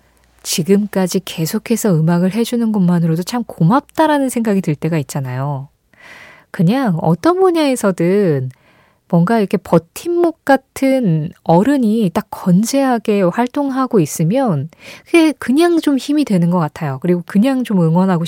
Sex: female